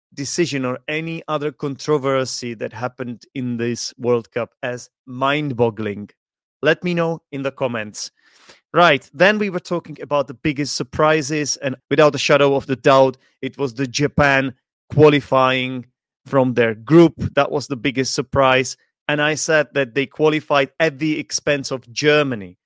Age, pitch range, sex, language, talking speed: 30-49, 125-150 Hz, male, English, 155 wpm